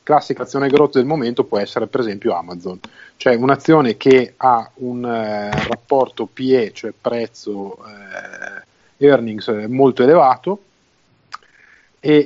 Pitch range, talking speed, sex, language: 115-140 Hz, 120 wpm, male, Italian